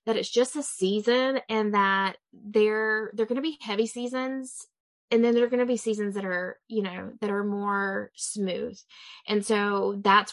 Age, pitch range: 20-39, 195-225 Hz